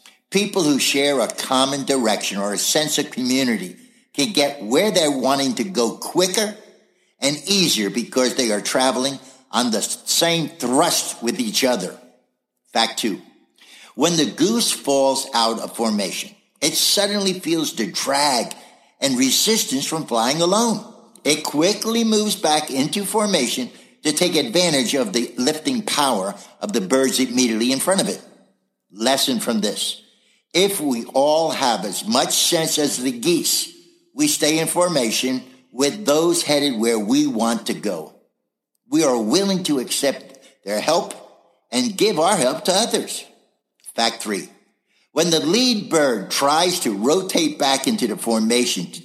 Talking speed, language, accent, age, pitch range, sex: 150 wpm, English, American, 60-79, 130-220 Hz, male